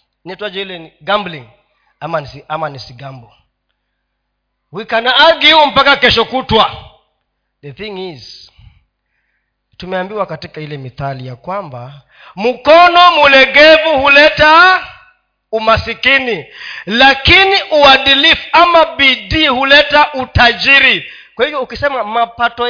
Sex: male